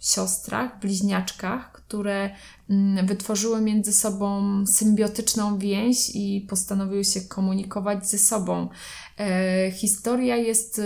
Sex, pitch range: female, 195-220 Hz